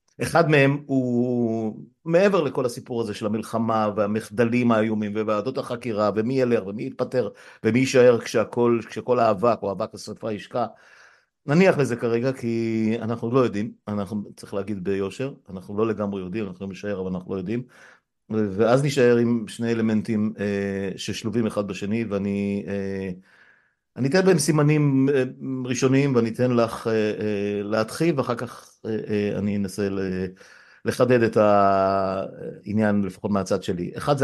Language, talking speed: Hebrew, 140 wpm